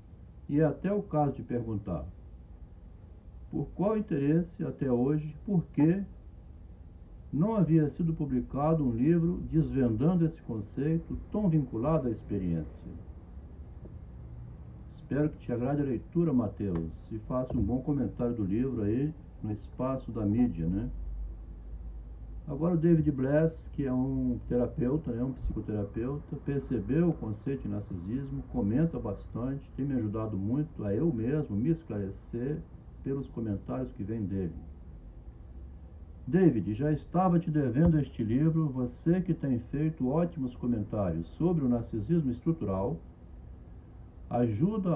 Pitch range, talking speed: 95-150 Hz, 130 wpm